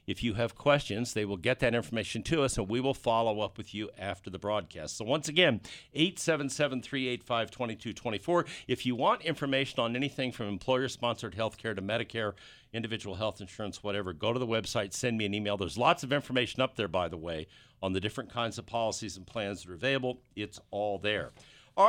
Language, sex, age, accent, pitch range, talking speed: English, male, 50-69, American, 105-135 Hz, 200 wpm